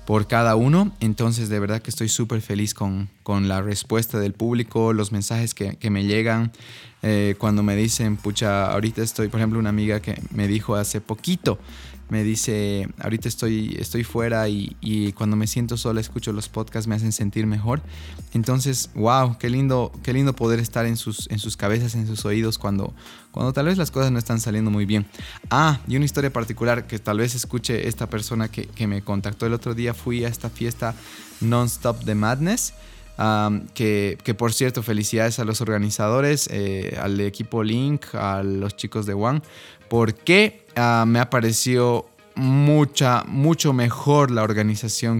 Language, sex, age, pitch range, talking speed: Spanish, male, 20-39, 105-120 Hz, 180 wpm